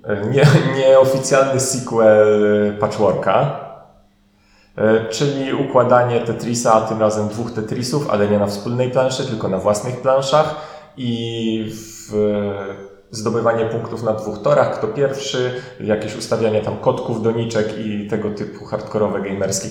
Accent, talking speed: native, 120 wpm